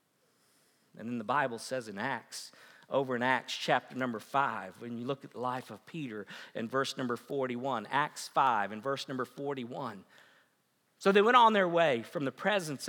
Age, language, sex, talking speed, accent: 50-69, English, male, 185 wpm, American